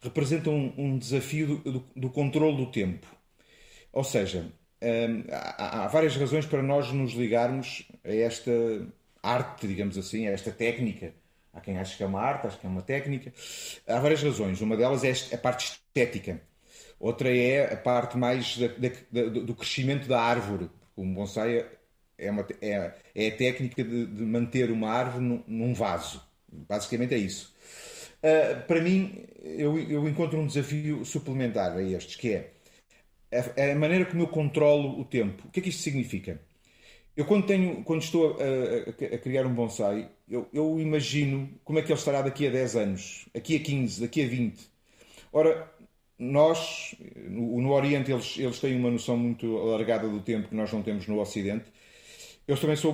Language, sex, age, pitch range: Portuguese, male, 40-59, 110-145 Hz